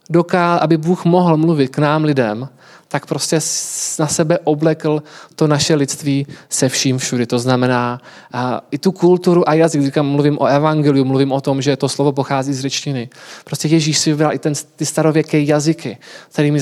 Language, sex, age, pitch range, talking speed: Czech, male, 20-39, 135-160 Hz, 185 wpm